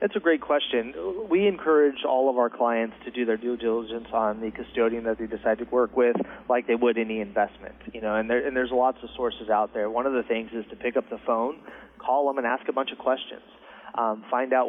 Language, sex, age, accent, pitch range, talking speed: English, male, 30-49, American, 110-125 Hz, 245 wpm